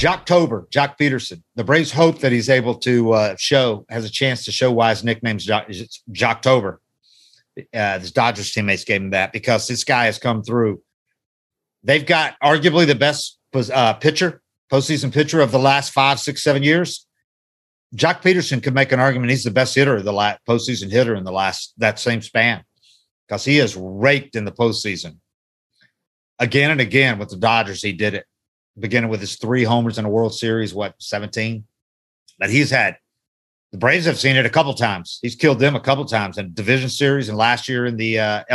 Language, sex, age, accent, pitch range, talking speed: English, male, 50-69, American, 110-135 Hz, 200 wpm